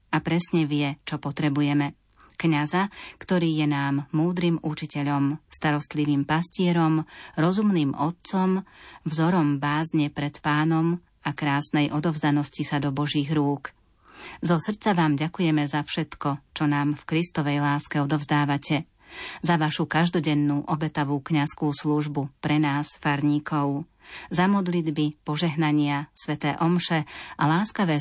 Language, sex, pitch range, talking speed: Slovak, female, 145-165 Hz, 115 wpm